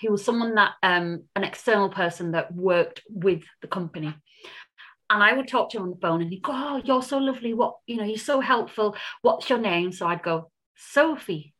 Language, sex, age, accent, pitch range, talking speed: English, female, 30-49, British, 175-235 Hz, 215 wpm